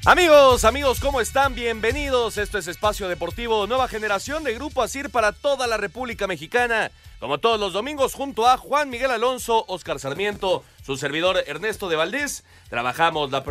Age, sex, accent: 40-59, male, Mexican